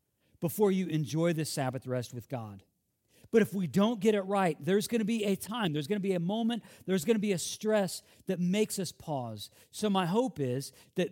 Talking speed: 225 wpm